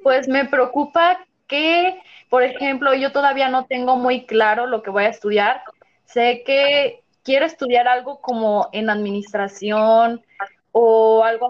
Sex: female